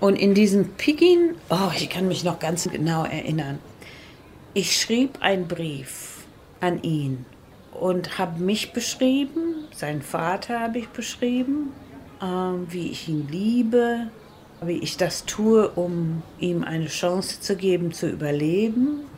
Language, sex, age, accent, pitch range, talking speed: German, female, 40-59, German, 170-225 Hz, 135 wpm